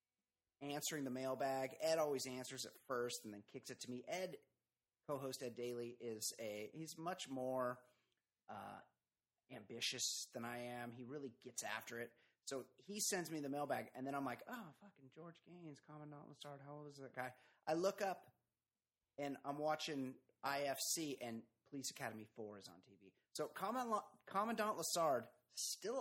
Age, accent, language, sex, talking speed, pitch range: 30-49, American, English, male, 170 wpm, 120-160 Hz